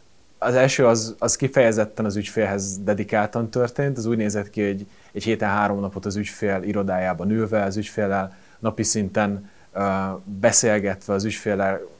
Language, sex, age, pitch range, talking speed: Hungarian, male, 30-49, 95-115 Hz, 145 wpm